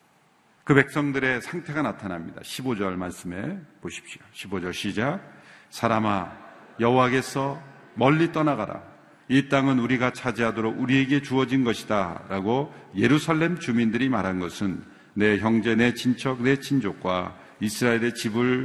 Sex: male